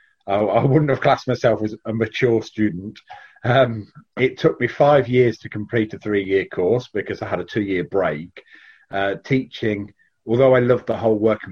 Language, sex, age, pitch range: English, male, 40-59, 100-130 Hz